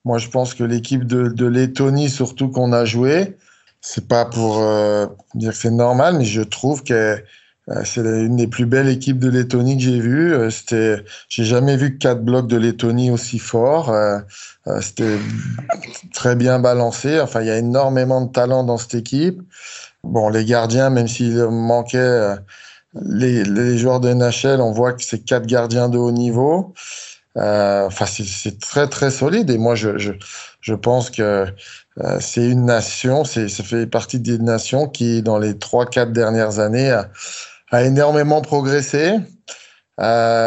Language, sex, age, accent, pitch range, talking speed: French, male, 20-39, French, 115-130 Hz, 175 wpm